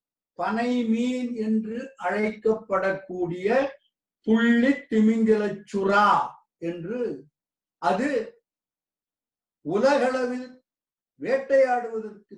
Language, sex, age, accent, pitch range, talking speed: Tamil, male, 50-69, native, 170-240 Hz, 55 wpm